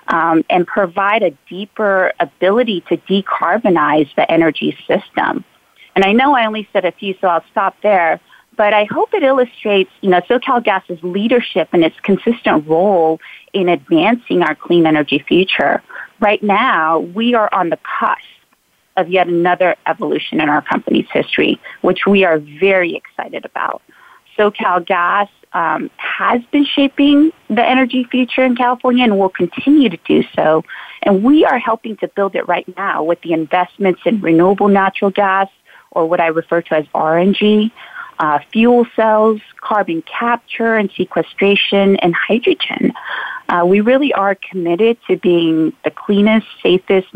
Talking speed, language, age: 155 wpm, English, 30-49